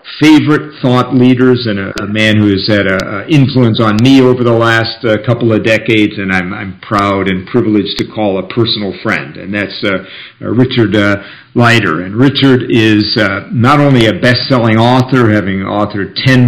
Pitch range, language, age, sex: 105-125 Hz, English, 50-69, male